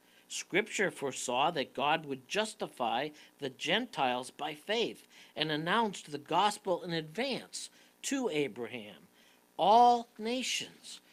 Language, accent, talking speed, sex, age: English, American, 110 wpm, male, 60-79